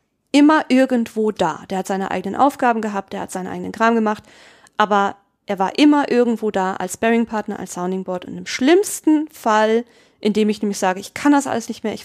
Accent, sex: German, female